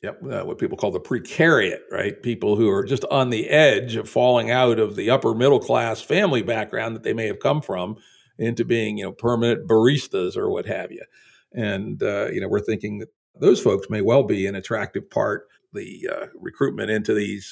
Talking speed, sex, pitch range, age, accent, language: 205 wpm, male, 115-145 Hz, 50-69, American, English